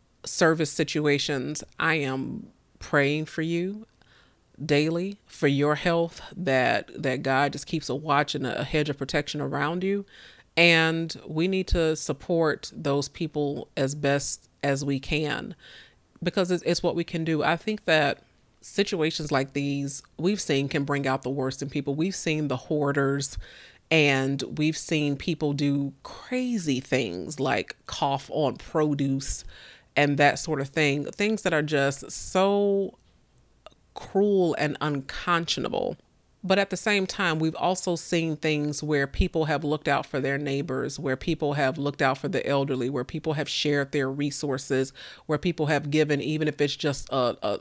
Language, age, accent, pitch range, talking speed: English, 30-49, American, 140-165 Hz, 160 wpm